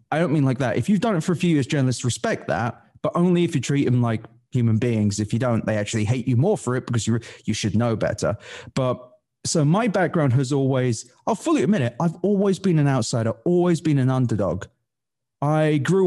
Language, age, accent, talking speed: English, 20-39, British, 225 wpm